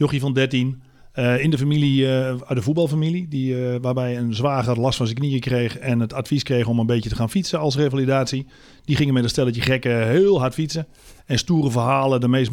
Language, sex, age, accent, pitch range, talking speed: Dutch, male, 40-59, Dutch, 115-140 Hz, 210 wpm